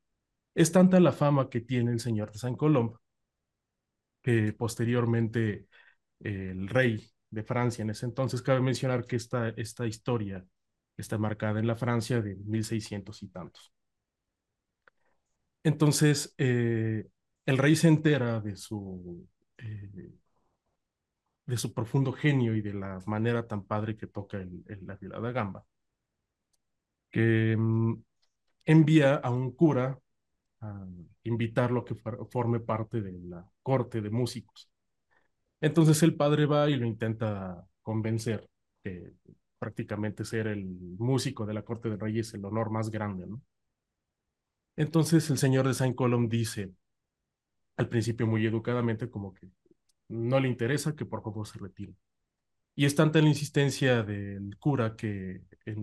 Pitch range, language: 105-125 Hz, Spanish